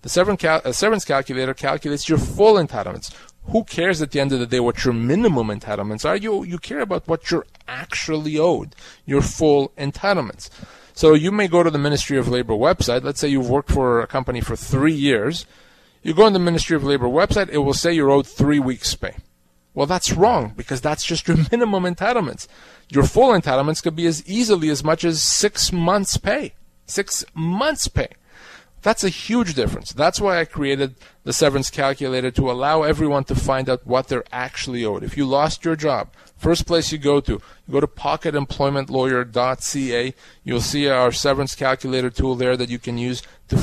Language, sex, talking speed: English, male, 190 wpm